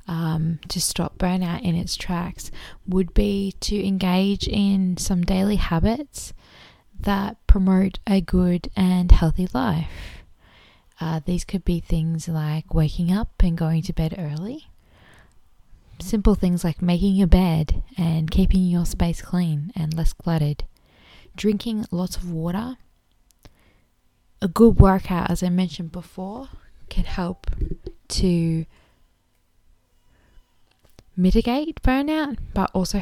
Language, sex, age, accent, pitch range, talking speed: English, female, 20-39, Australian, 160-195 Hz, 120 wpm